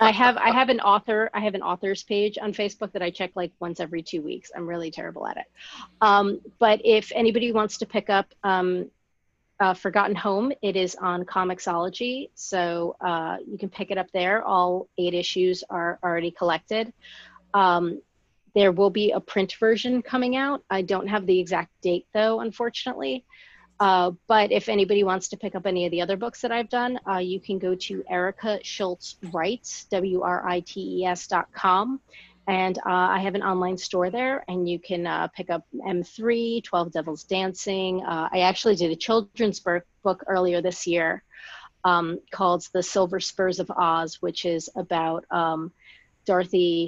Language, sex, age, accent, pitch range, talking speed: English, female, 30-49, American, 175-210 Hz, 180 wpm